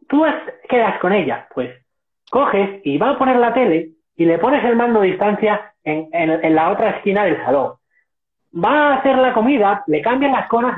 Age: 30-49